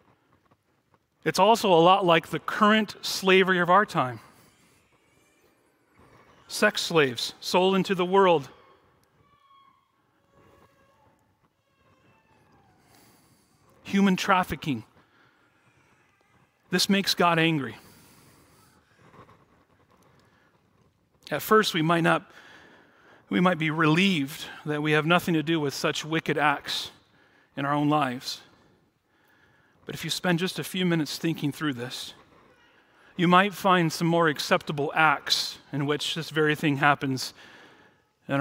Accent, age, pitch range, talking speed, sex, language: American, 40-59, 140-175 Hz, 110 wpm, male, English